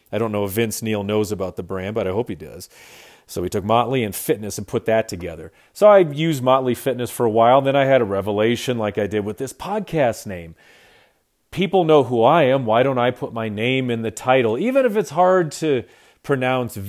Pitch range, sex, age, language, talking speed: 110-145 Hz, male, 40-59, English, 235 wpm